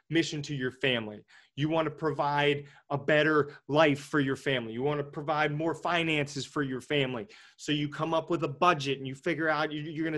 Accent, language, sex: American, English, male